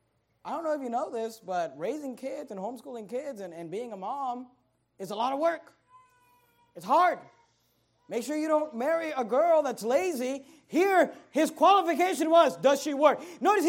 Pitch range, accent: 195-260 Hz, American